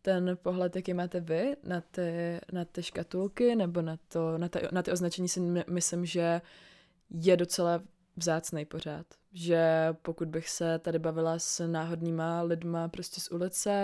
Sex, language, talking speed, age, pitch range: female, Czech, 160 wpm, 20-39, 170-185 Hz